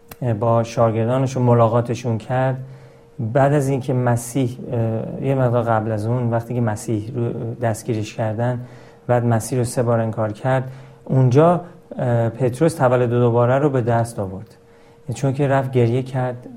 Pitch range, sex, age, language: 115-135 Hz, male, 40-59, Persian